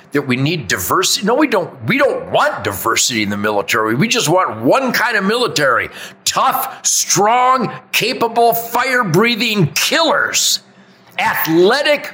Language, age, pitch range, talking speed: English, 50-69, 150-245 Hz, 135 wpm